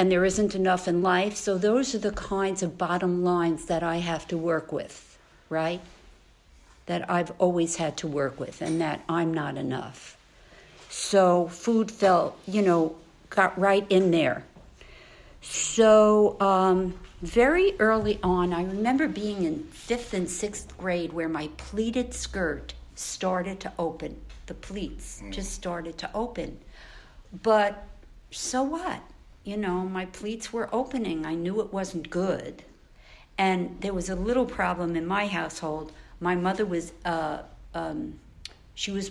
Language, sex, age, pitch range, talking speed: English, female, 60-79, 170-200 Hz, 150 wpm